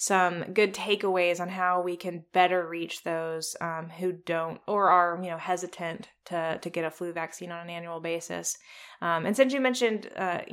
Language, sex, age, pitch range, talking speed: English, female, 20-39, 165-185 Hz, 195 wpm